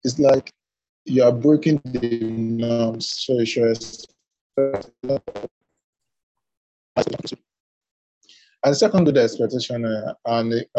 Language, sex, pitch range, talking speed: English, male, 115-140 Hz, 90 wpm